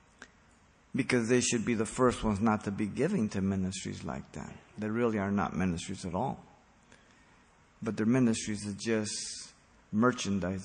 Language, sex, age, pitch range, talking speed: English, male, 50-69, 100-130 Hz, 160 wpm